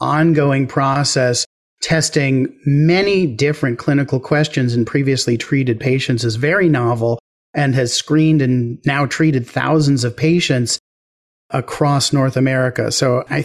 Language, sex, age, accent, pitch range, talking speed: English, male, 40-59, American, 125-150 Hz, 125 wpm